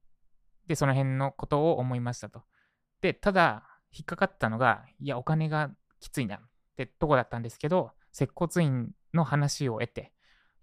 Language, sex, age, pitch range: Japanese, male, 20-39, 110-150 Hz